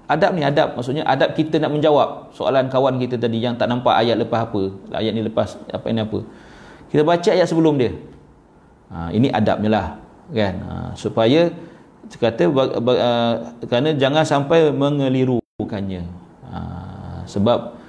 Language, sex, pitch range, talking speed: Malay, male, 115-160 Hz, 150 wpm